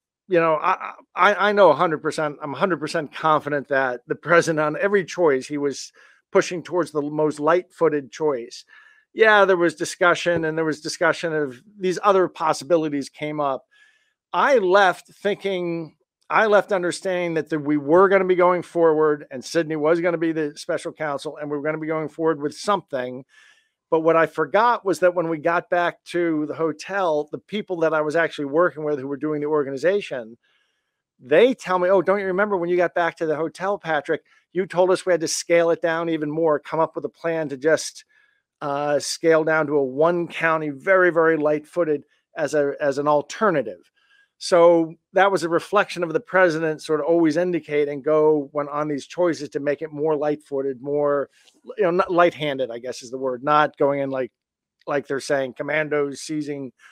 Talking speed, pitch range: 205 wpm, 150-185 Hz